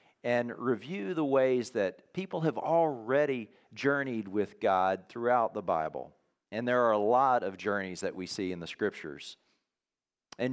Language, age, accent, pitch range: English, 40-59, American, 110-150 Hz